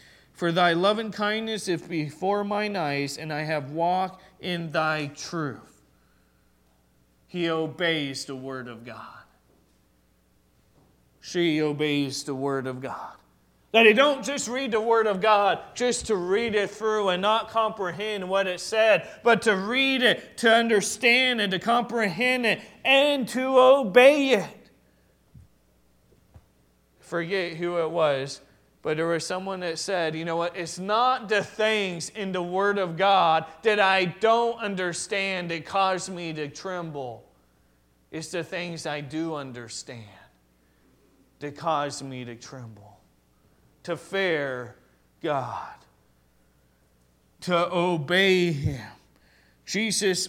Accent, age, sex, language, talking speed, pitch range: American, 30-49, male, English, 130 wpm, 140-215 Hz